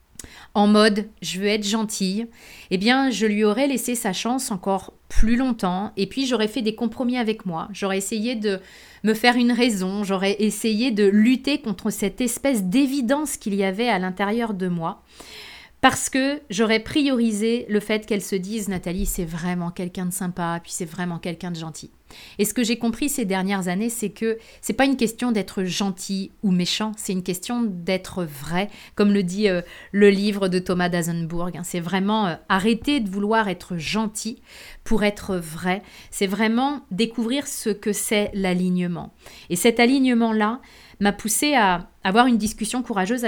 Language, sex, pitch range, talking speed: French, female, 190-235 Hz, 175 wpm